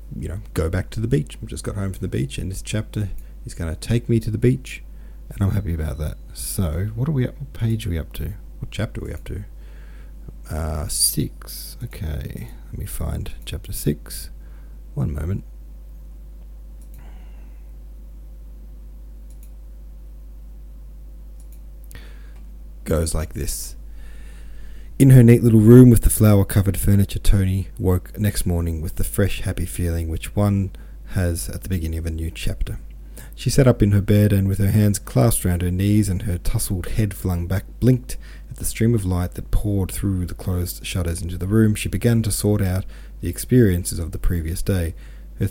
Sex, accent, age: male, Australian, 40-59